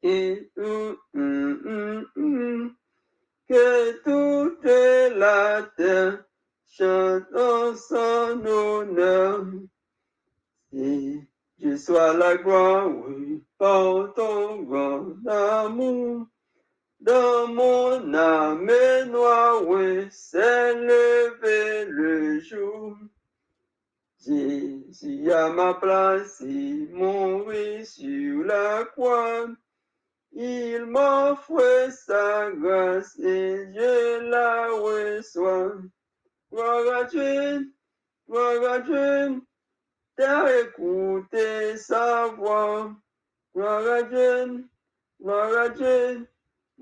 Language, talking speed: English, 75 wpm